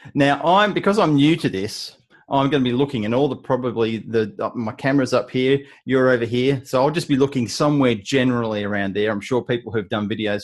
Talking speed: 230 wpm